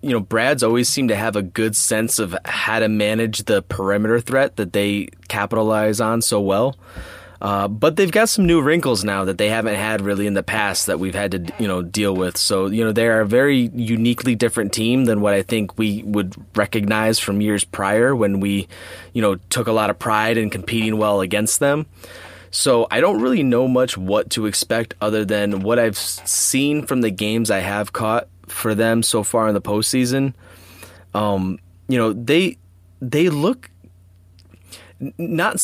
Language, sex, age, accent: English, male, 20-39, American